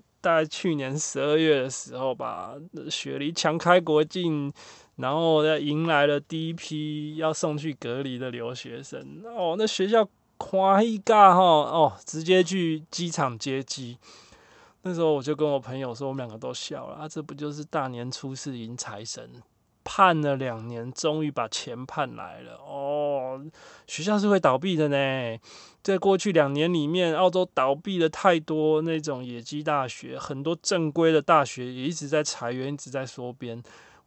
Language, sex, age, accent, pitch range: Chinese, male, 20-39, native, 135-170 Hz